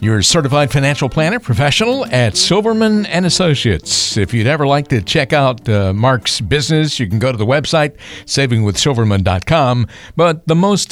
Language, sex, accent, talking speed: English, male, American, 160 wpm